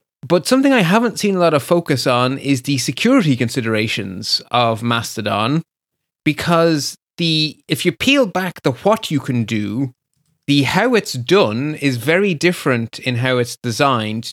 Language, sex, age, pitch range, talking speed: English, male, 30-49, 120-155 Hz, 160 wpm